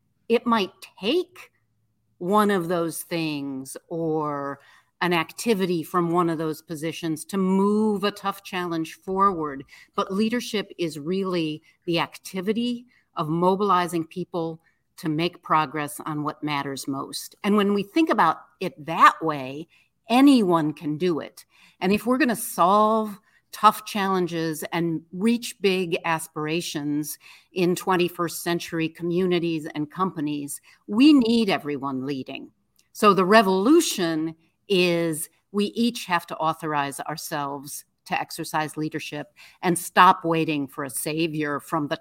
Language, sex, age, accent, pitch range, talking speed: English, female, 50-69, American, 155-195 Hz, 130 wpm